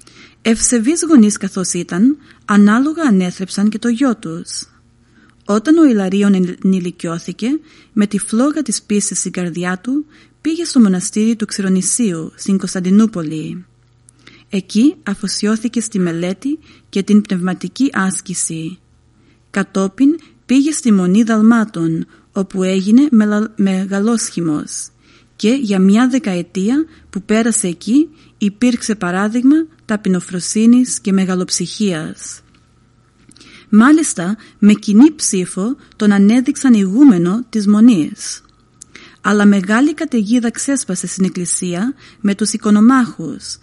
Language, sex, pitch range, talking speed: Greek, female, 185-240 Hz, 105 wpm